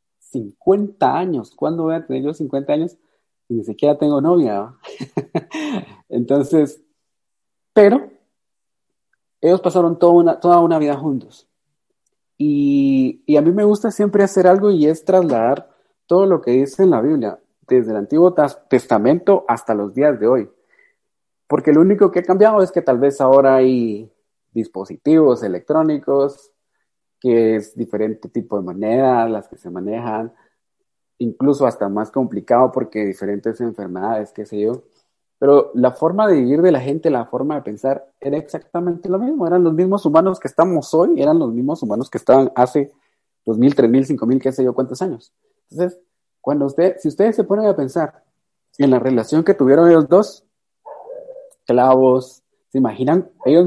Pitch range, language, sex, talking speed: 125-180 Hz, Spanish, male, 165 wpm